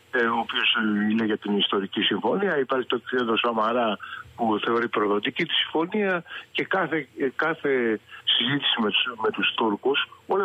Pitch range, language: 115-185 Hz, Greek